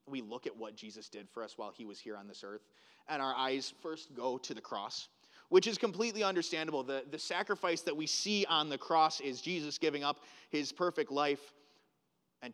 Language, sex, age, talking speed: English, male, 30-49, 210 wpm